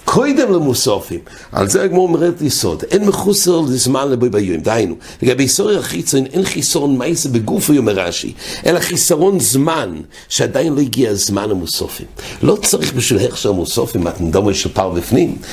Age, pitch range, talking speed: 60-79, 100-150 Hz, 120 wpm